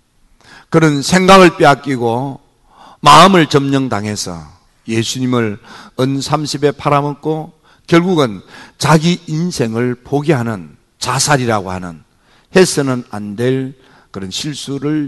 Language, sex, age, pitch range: Korean, male, 50-69, 110-145 Hz